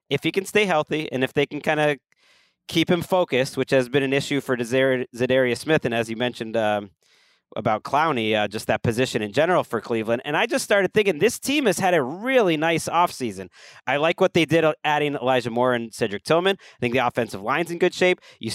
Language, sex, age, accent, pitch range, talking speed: English, male, 30-49, American, 135-190 Hz, 230 wpm